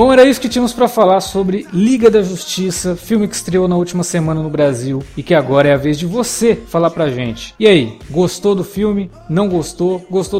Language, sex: Portuguese, male